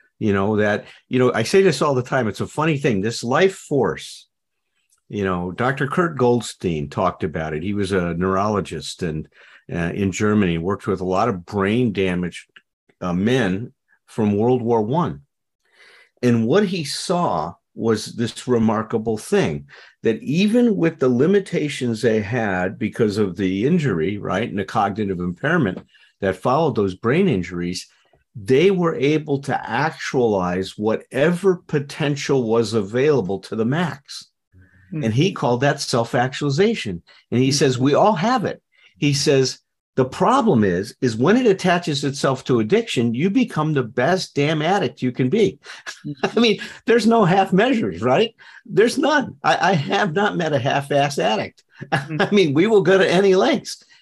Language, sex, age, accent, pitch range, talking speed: English, male, 50-69, American, 105-170 Hz, 165 wpm